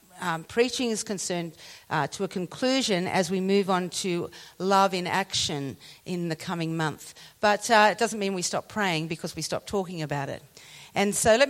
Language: English